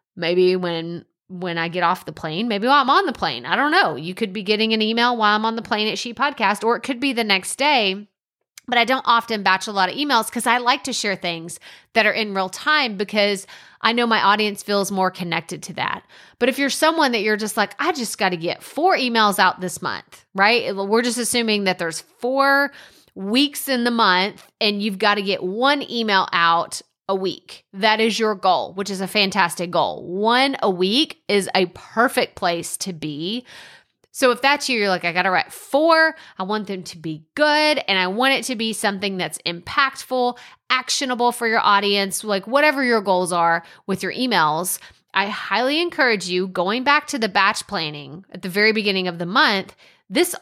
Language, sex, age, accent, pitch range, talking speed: English, female, 30-49, American, 185-245 Hz, 215 wpm